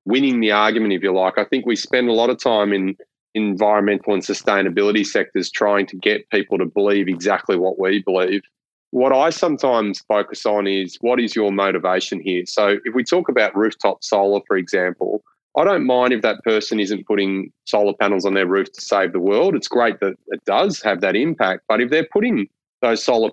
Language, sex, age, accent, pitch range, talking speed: English, male, 30-49, Australian, 100-110 Hz, 205 wpm